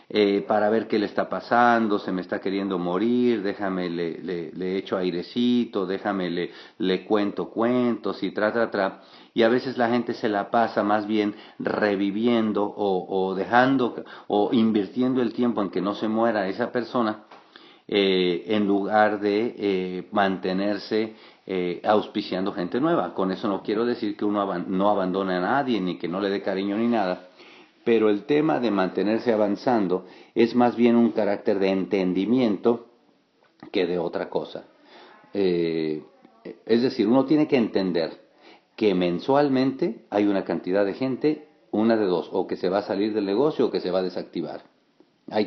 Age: 40-59